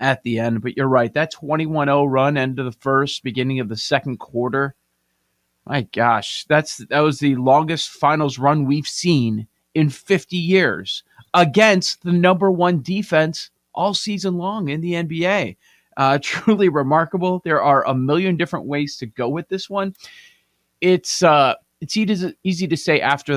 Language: English